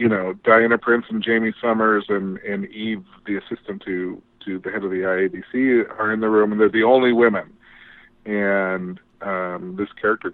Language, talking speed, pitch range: English, 185 wpm, 95-120 Hz